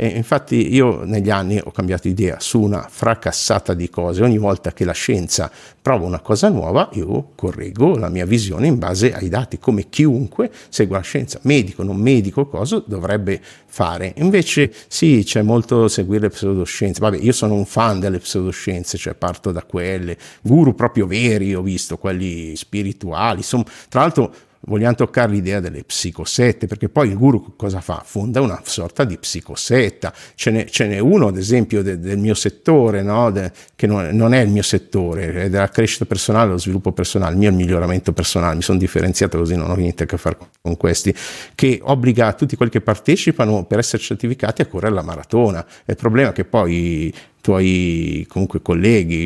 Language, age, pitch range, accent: Italian, 50-69, 90-115 Hz, native